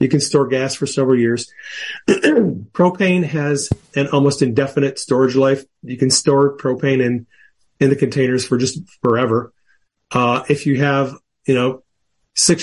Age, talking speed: 40-59, 150 wpm